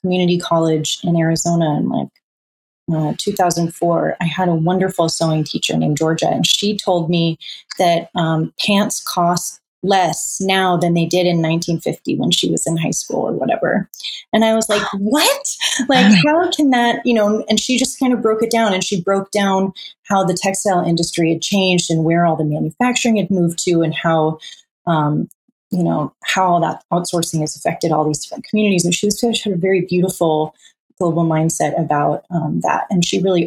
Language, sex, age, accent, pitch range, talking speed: English, female, 30-49, American, 165-220 Hz, 190 wpm